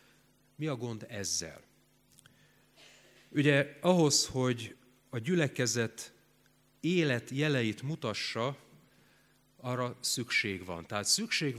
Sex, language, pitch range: male, Hungarian, 110-140 Hz